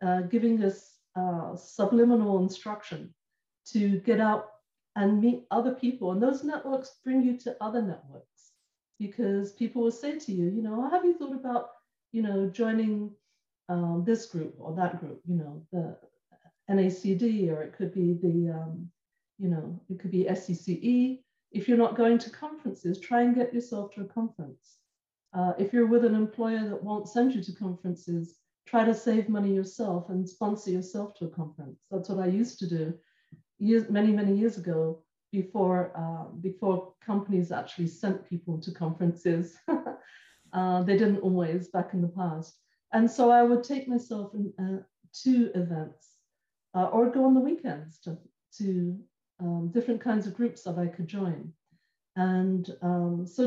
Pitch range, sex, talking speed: 180-230 Hz, female, 170 wpm